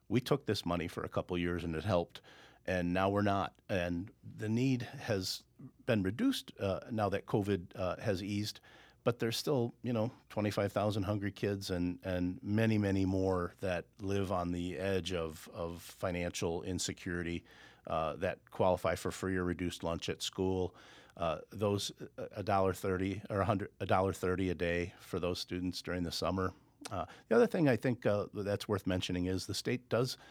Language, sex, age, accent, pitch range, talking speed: English, male, 50-69, American, 90-105 Hz, 175 wpm